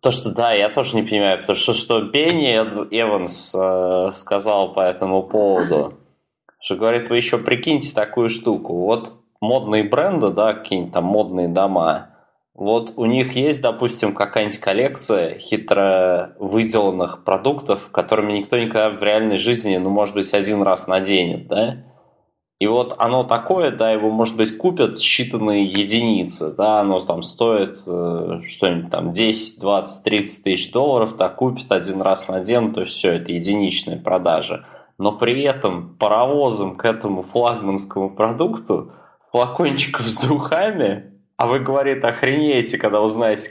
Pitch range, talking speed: 100-120 Hz, 145 wpm